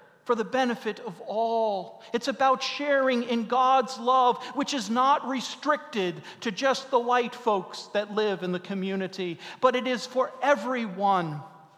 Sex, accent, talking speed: male, American, 155 wpm